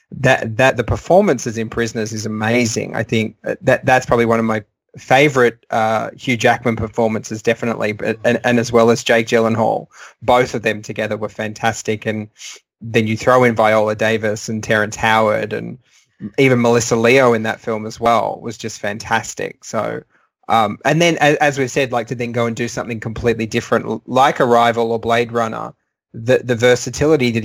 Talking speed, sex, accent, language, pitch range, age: 185 wpm, male, Australian, English, 110-125 Hz, 20-39